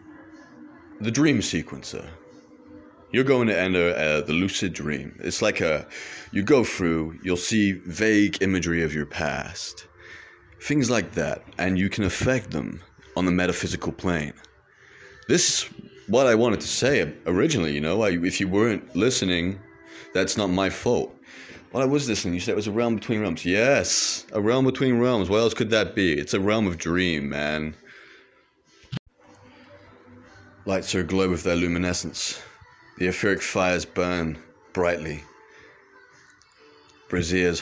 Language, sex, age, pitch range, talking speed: English, male, 30-49, 80-100 Hz, 150 wpm